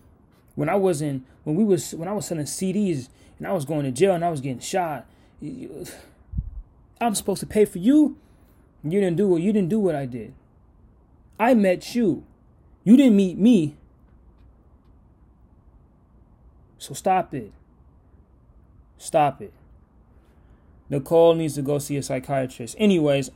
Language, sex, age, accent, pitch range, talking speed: English, male, 20-39, American, 120-185 Hz, 155 wpm